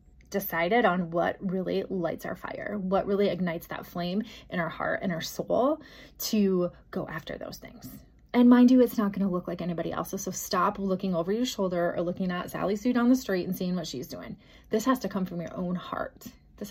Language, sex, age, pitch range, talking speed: English, female, 20-39, 175-210 Hz, 225 wpm